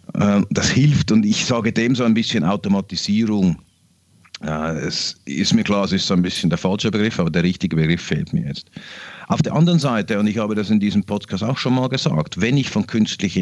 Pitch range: 95-130 Hz